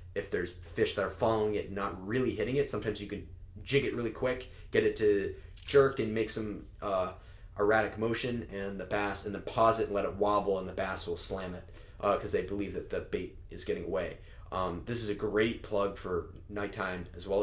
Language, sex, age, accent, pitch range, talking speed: English, male, 30-49, American, 95-125 Hz, 225 wpm